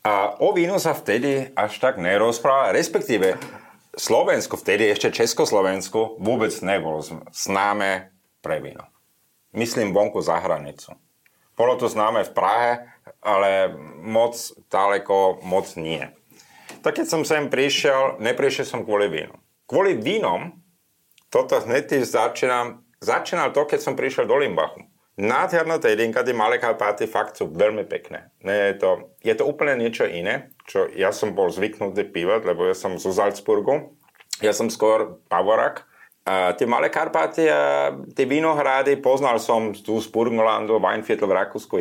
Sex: male